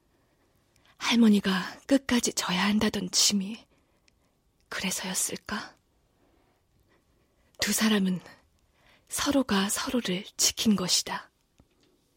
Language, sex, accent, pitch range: Korean, female, native, 195-240 Hz